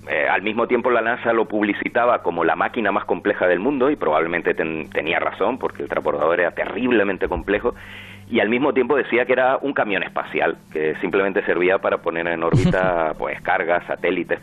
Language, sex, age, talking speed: Spanish, male, 40-59, 190 wpm